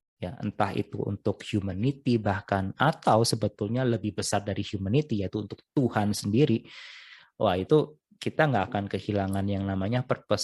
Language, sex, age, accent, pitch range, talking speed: Indonesian, male, 20-39, native, 100-120 Hz, 145 wpm